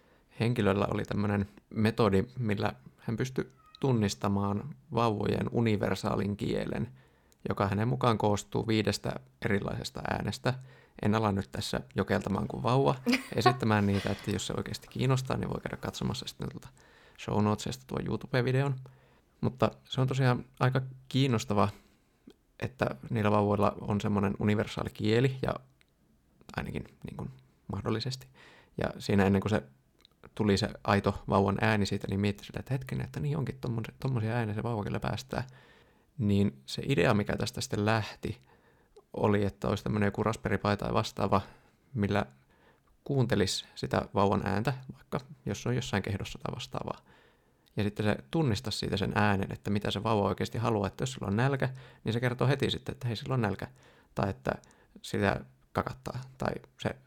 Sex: male